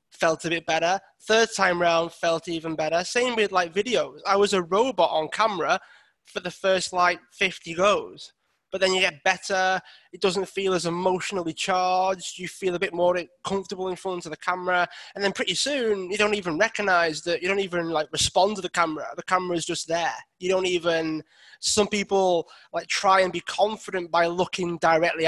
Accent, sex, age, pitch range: British, male, 20-39, 165-190 Hz